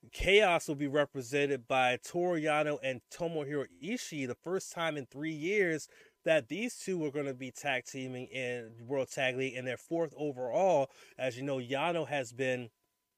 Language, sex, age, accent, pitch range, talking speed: English, male, 30-49, American, 120-145 Hz, 180 wpm